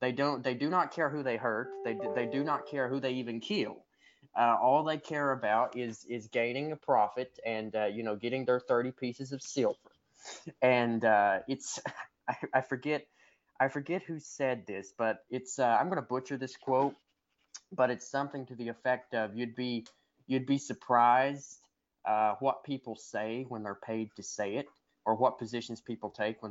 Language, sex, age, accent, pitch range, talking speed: English, male, 20-39, American, 115-140 Hz, 195 wpm